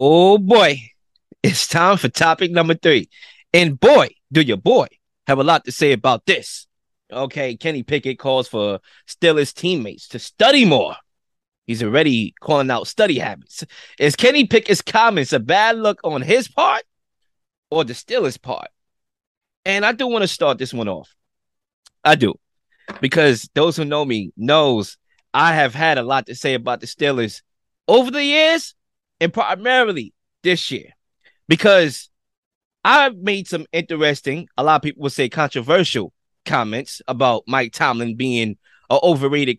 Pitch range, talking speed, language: 135-185 Hz, 155 wpm, English